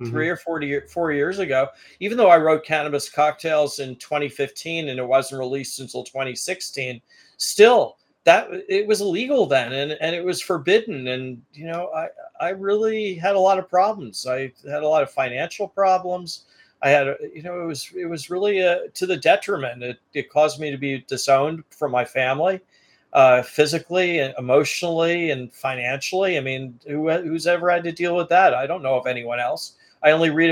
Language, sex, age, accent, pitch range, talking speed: English, male, 40-59, American, 135-170 Hz, 190 wpm